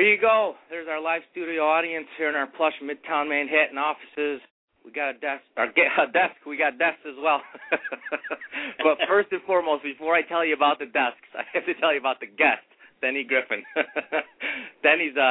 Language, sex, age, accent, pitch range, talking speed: English, male, 30-49, American, 115-150 Hz, 190 wpm